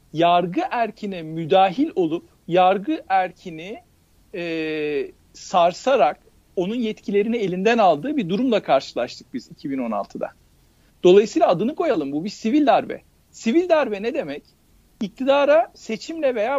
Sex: male